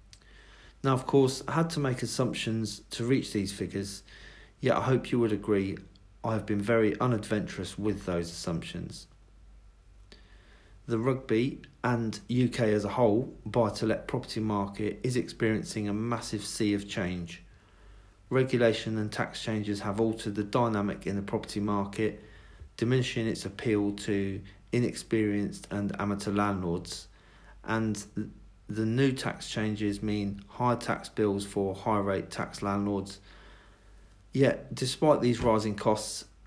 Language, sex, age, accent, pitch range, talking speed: English, male, 50-69, British, 100-115 Hz, 135 wpm